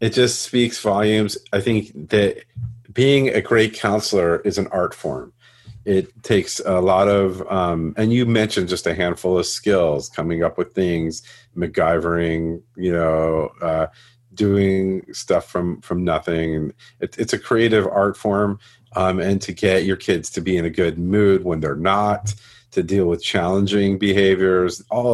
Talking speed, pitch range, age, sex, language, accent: 165 wpm, 85-110 Hz, 40-59, male, English, American